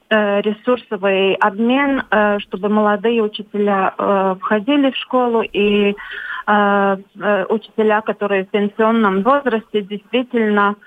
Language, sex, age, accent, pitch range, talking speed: Russian, female, 30-49, native, 205-230 Hz, 85 wpm